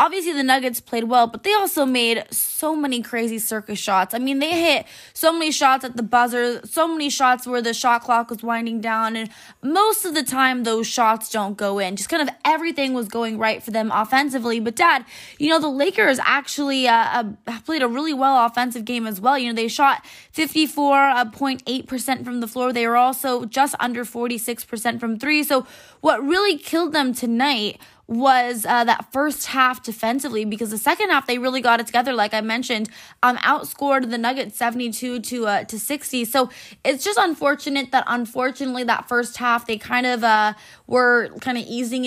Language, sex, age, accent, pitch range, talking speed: English, female, 20-39, American, 230-275 Hz, 195 wpm